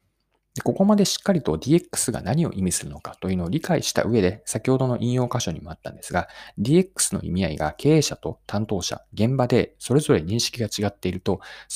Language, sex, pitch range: Japanese, male, 90-150 Hz